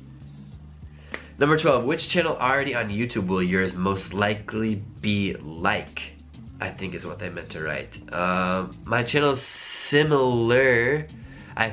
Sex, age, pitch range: male, 20-39, 95-115 Hz